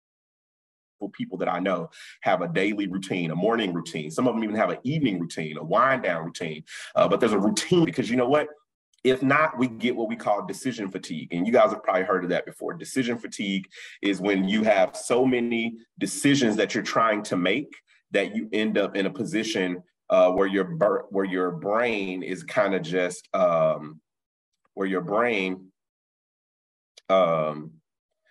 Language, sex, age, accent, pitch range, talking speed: English, male, 30-49, American, 90-130 Hz, 180 wpm